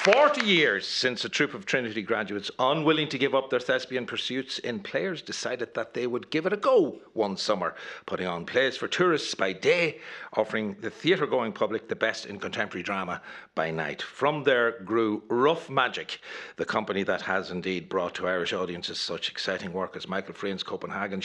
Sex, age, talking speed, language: male, 60-79, 190 wpm, English